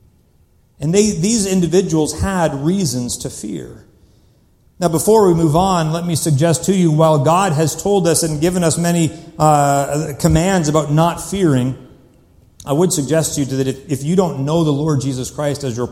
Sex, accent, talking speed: male, American, 180 wpm